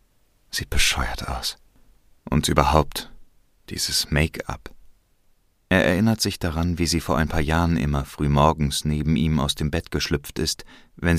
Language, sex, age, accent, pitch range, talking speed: German, male, 40-59, German, 70-90 Hz, 150 wpm